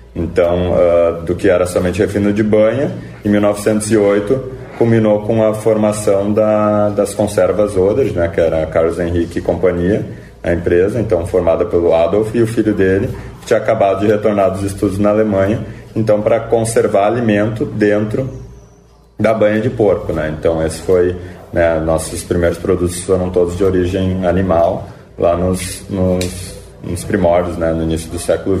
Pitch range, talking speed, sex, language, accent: 85-105 Hz, 160 wpm, male, Portuguese, Brazilian